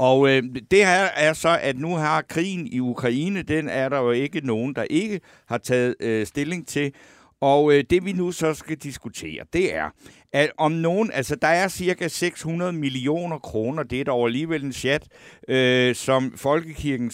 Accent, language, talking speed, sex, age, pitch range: native, Danish, 190 wpm, male, 60-79, 120-155 Hz